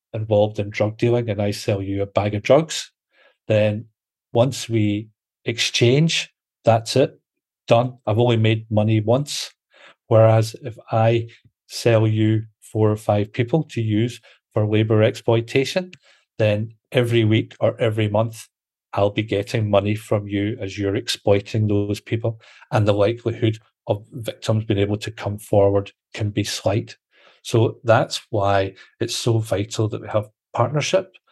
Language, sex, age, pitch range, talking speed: English, male, 40-59, 105-115 Hz, 150 wpm